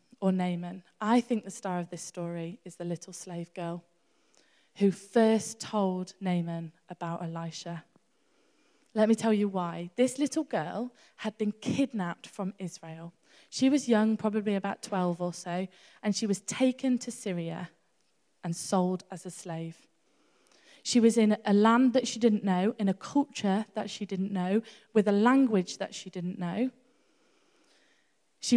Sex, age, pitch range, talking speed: female, 20-39, 175-225 Hz, 160 wpm